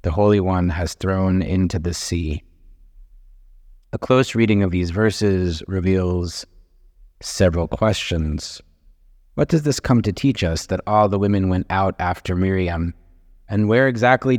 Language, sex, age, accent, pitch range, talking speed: English, male, 30-49, American, 85-115 Hz, 145 wpm